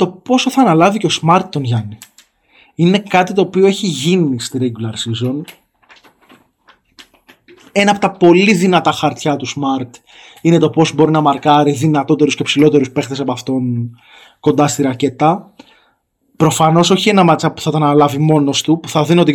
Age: 20-39